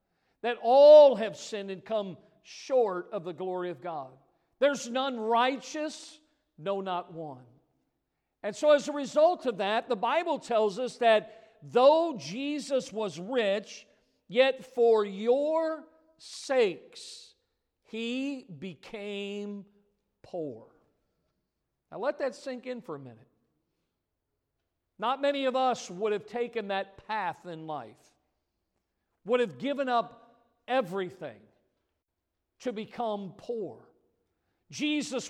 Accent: American